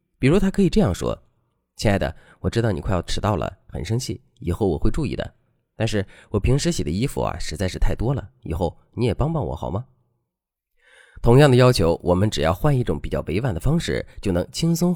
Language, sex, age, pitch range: Chinese, male, 30-49, 85-125 Hz